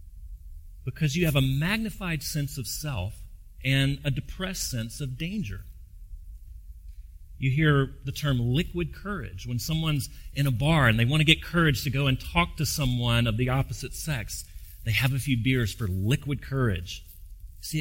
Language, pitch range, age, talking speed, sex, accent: English, 95-150 Hz, 40-59, 170 wpm, male, American